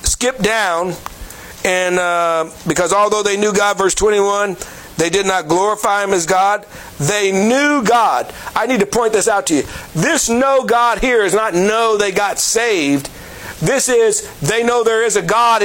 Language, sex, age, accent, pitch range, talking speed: English, male, 50-69, American, 170-215 Hz, 175 wpm